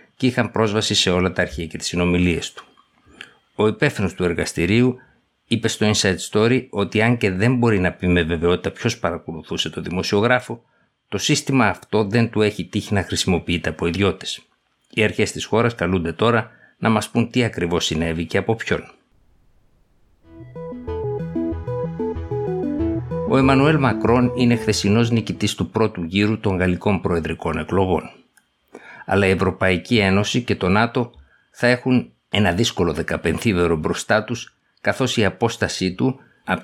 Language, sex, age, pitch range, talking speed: Greek, male, 60-79, 90-115 Hz, 145 wpm